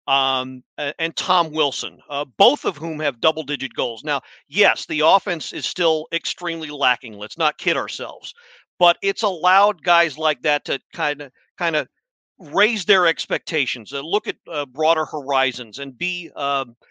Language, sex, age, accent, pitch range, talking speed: English, male, 40-59, American, 140-180 Hz, 165 wpm